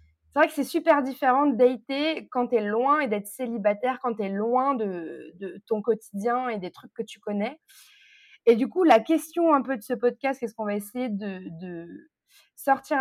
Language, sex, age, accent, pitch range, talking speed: French, female, 20-39, French, 210-270 Hz, 210 wpm